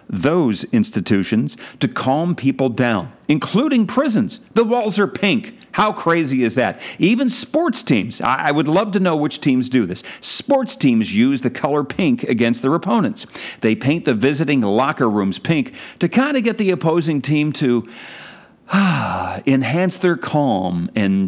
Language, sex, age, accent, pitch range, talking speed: English, male, 50-69, American, 125-185 Hz, 160 wpm